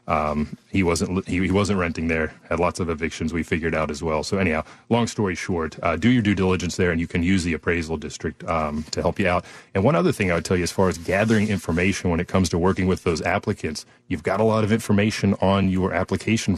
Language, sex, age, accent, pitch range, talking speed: English, male, 30-49, American, 85-105 Hz, 255 wpm